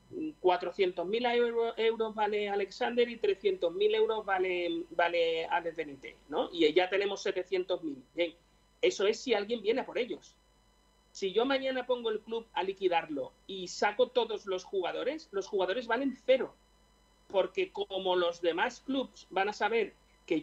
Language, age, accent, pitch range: Spanish, 40-59, Spanish, 185-305 Hz